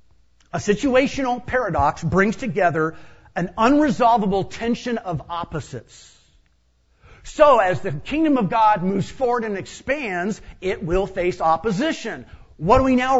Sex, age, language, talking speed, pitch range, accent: male, 50-69, English, 125 wpm, 145-225 Hz, American